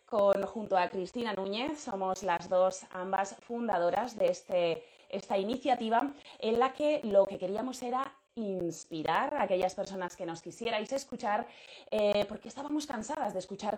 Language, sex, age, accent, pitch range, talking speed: Spanish, female, 20-39, Spanish, 175-245 Hz, 145 wpm